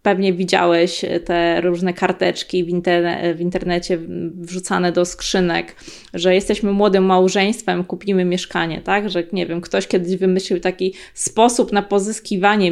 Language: Polish